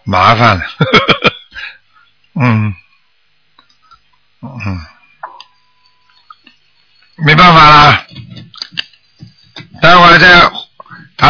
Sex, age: male, 60-79